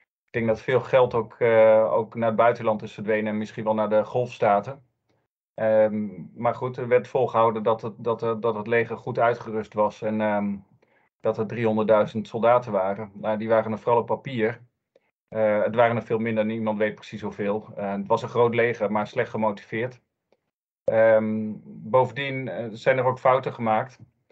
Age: 40-59